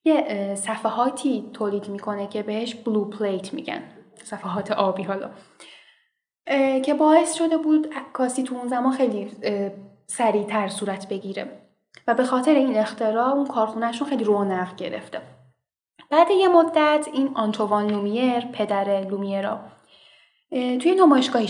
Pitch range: 205-280 Hz